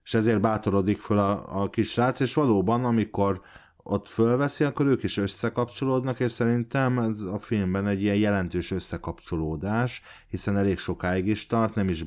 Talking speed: 160 wpm